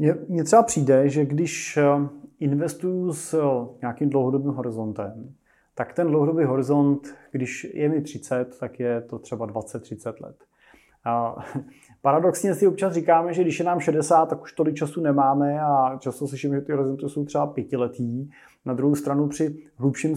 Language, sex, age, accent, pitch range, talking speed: Czech, male, 20-39, native, 125-150 Hz, 160 wpm